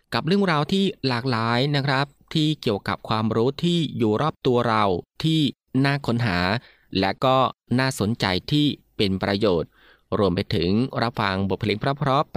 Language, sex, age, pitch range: Thai, male, 20-39, 100-135 Hz